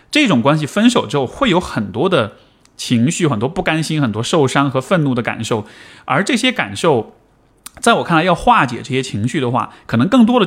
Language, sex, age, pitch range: Chinese, male, 20-39, 130-205 Hz